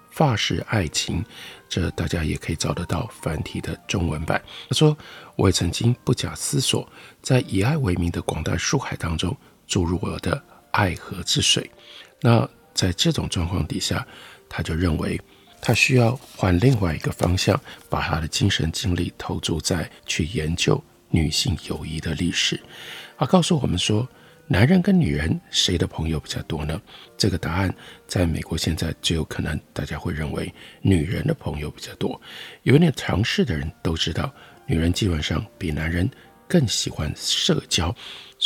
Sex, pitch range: male, 80-120 Hz